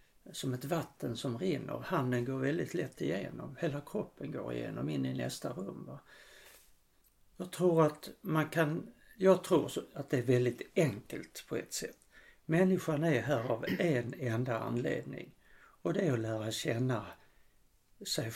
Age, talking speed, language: 60-79, 155 wpm, Swedish